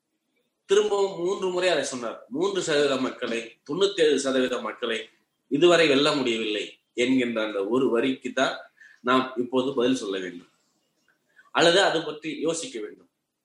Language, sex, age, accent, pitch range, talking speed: Tamil, male, 20-39, native, 135-195 Hz, 135 wpm